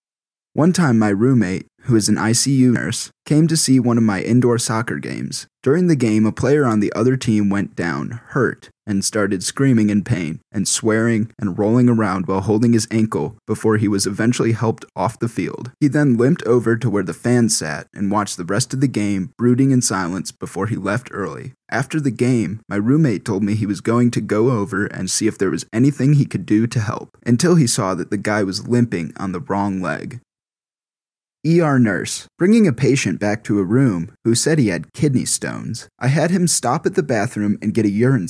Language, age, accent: English, 20-39, American